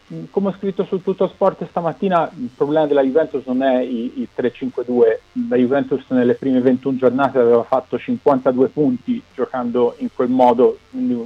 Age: 40-59